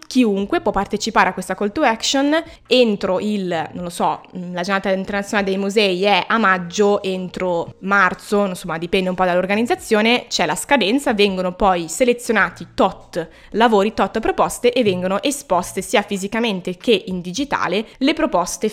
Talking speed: 155 wpm